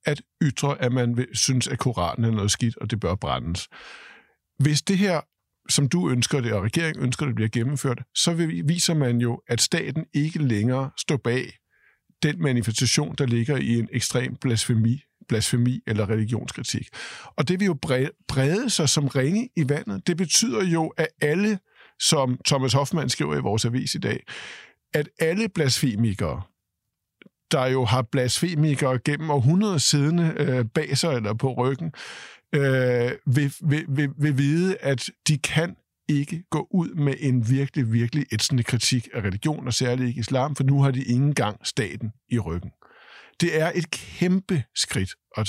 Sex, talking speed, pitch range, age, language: male, 165 wpm, 120-155 Hz, 50-69, Danish